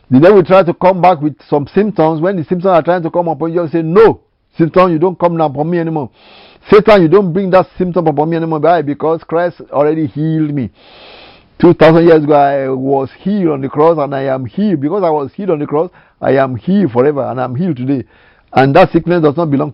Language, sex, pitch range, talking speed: English, male, 140-185 Hz, 245 wpm